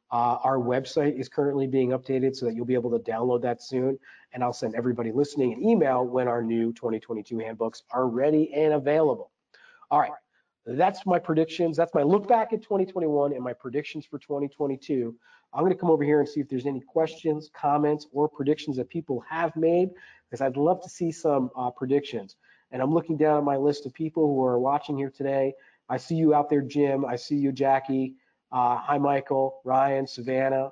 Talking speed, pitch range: 200 wpm, 130-150 Hz